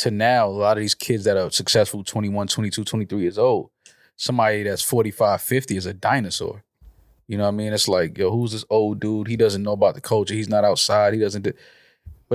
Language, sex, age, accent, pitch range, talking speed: English, male, 20-39, American, 105-120 Hz, 225 wpm